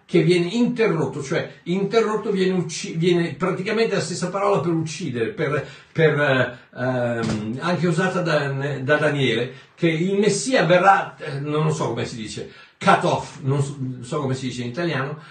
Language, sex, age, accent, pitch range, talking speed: Italian, male, 60-79, native, 140-200 Hz, 160 wpm